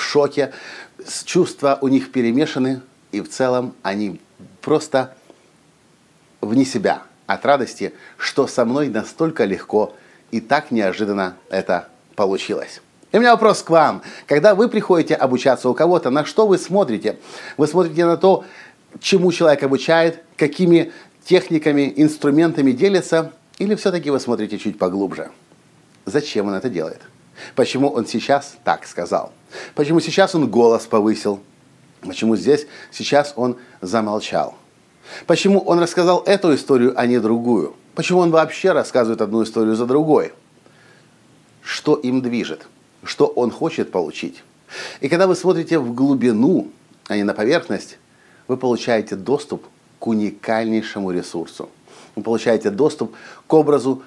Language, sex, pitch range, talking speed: Russian, male, 115-165 Hz, 135 wpm